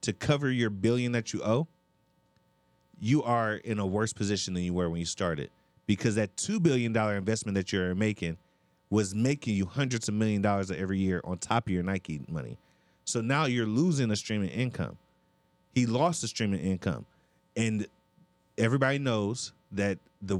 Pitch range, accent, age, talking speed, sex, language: 95-120 Hz, American, 30-49, 180 wpm, male, English